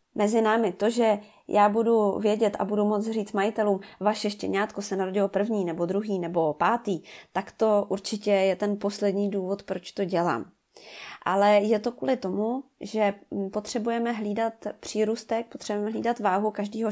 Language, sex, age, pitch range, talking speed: Czech, female, 20-39, 200-230 Hz, 155 wpm